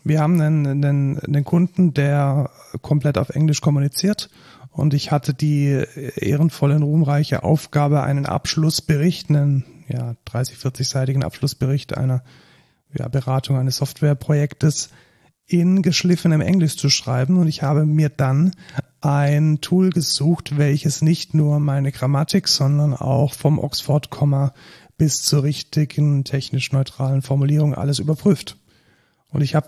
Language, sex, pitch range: German, male, 135-155 Hz